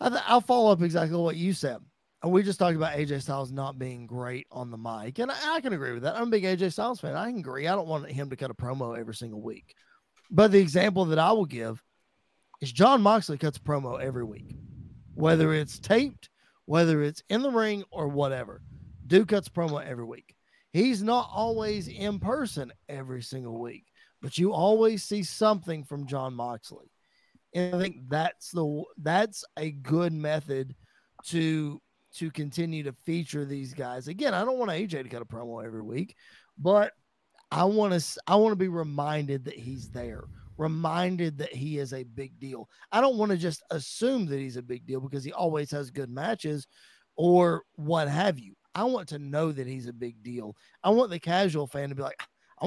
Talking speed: 200 wpm